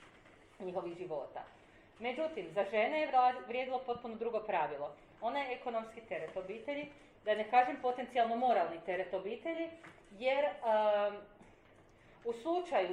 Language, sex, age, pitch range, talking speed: Croatian, female, 40-59, 180-245 Hz, 120 wpm